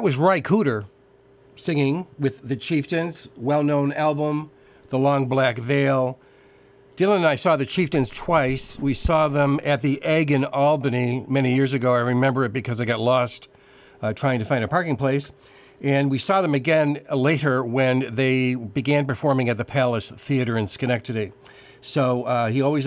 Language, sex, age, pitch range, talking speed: English, male, 50-69, 125-145 Hz, 175 wpm